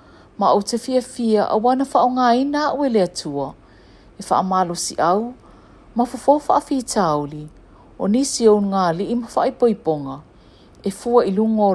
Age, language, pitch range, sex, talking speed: 50-69, English, 165-250 Hz, female, 155 wpm